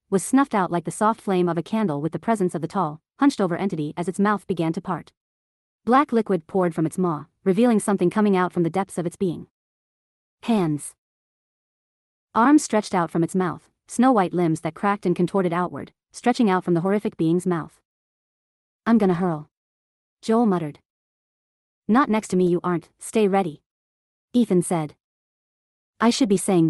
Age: 30-49